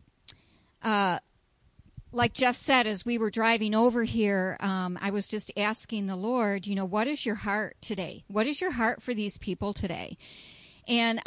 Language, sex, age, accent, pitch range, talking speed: English, female, 50-69, American, 190-245 Hz, 175 wpm